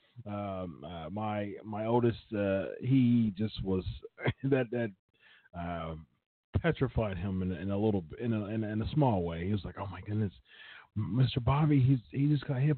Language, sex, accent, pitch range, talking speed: English, male, American, 100-135 Hz, 185 wpm